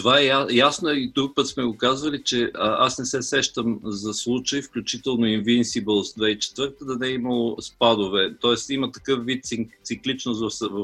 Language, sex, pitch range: Bulgarian, male, 110-130 Hz